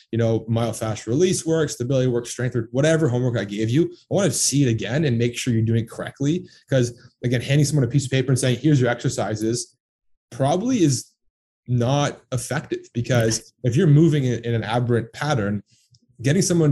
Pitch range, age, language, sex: 115-140 Hz, 30-49, English, male